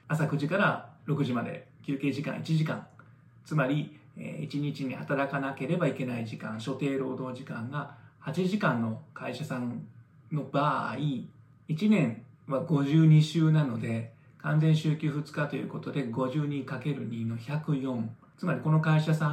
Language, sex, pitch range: Japanese, male, 125-155 Hz